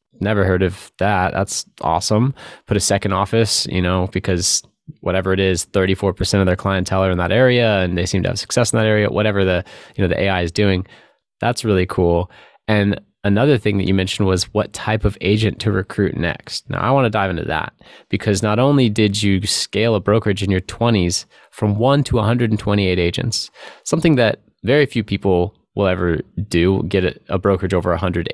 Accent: American